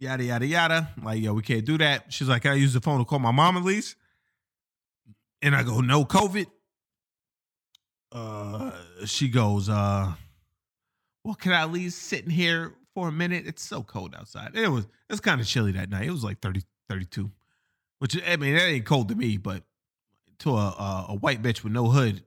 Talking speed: 205 wpm